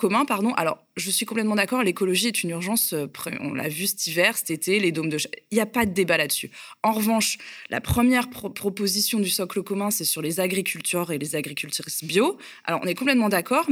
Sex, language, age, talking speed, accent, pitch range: female, French, 20-39, 220 wpm, French, 170-220 Hz